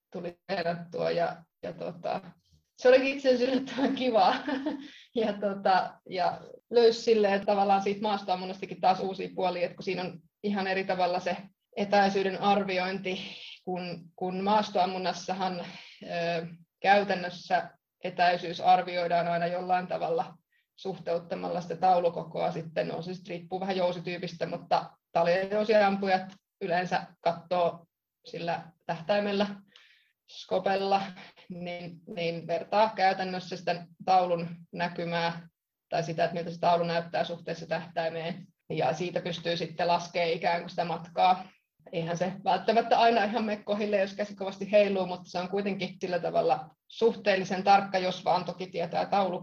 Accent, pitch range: native, 170-195 Hz